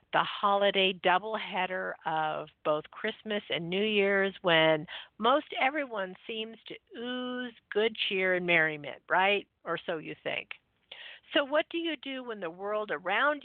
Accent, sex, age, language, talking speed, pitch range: American, female, 50-69, English, 145 wpm, 165-240 Hz